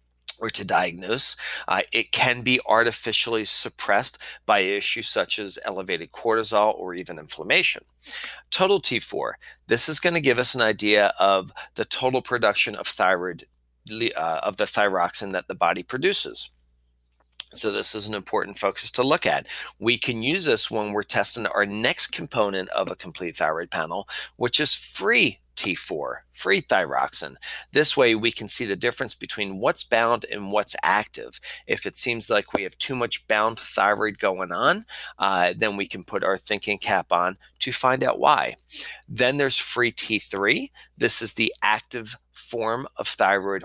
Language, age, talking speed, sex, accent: English, 40-59, 165 wpm, male, American